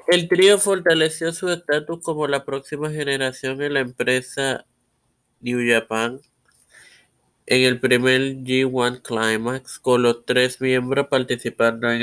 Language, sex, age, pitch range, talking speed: Spanish, male, 20-39, 120-135 Hz, 125 wpm